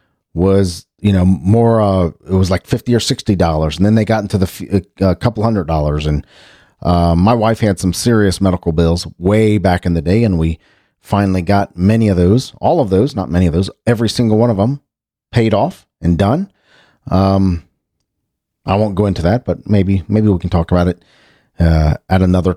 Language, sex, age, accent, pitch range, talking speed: English, male, 40-59, American, 85-115 Hz, 200 wpm